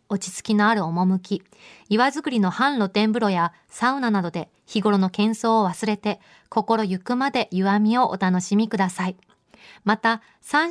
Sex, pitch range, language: female, 195-230 Hz, Japanese